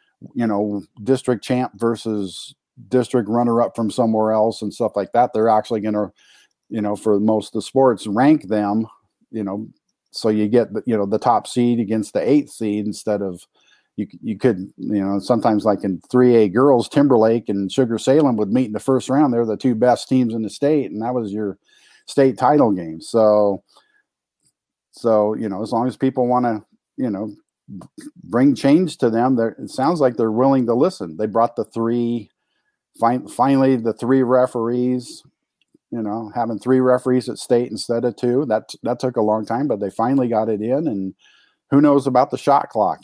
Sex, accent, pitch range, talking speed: male, American, 105-125 Hz, 200 wpm